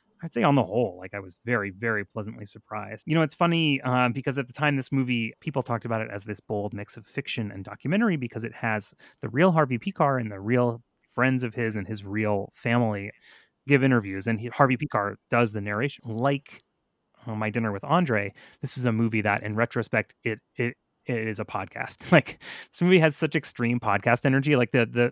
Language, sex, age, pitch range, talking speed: English, male, 30-49, 105-135 Hz, 215 wpm